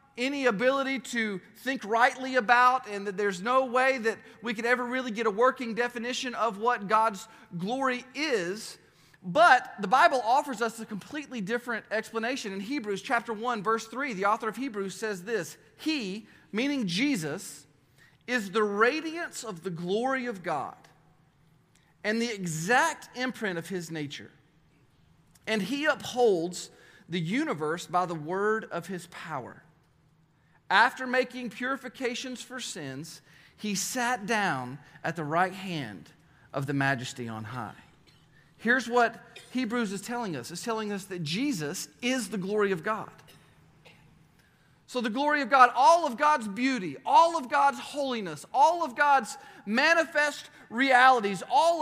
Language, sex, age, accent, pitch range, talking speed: English, male, 40-59, American, 190-260 Hz, 145 wpm